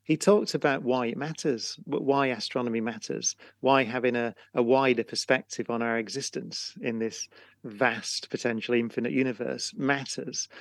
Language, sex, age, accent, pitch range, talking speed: English, male, 40-59, British, 120-155 Hz, 140 wpm